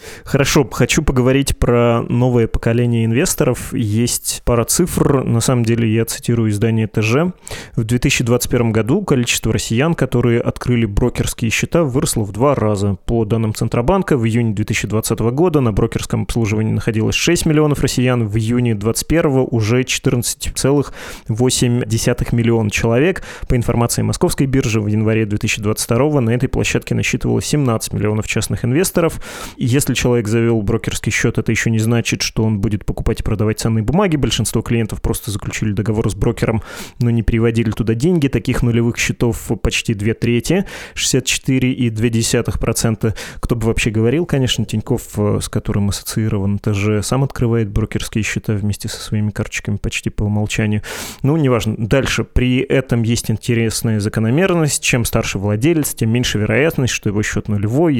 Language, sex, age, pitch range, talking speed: Russian, male, 20-39, 110-125 Hz, 145 wpm